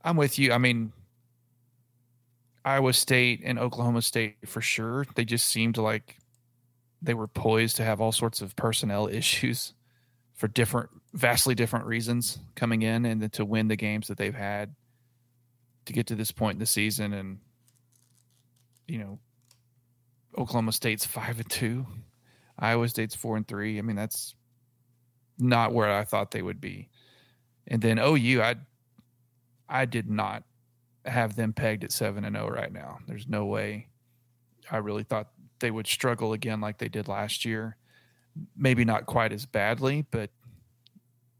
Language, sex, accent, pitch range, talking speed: English, male, American, 110-125 Hz, 160 wpm